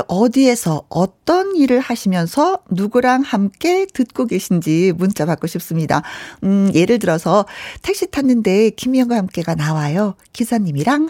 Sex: female